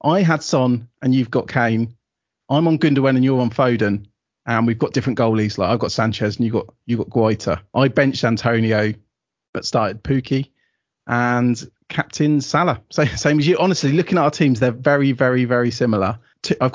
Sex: male